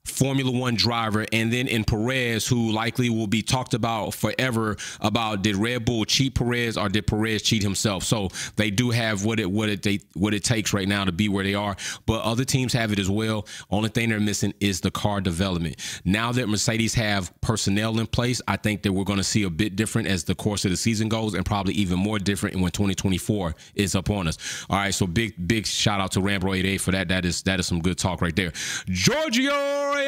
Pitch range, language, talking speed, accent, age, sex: 100-130 Hz, English, 230 wpm, American, 30-49, male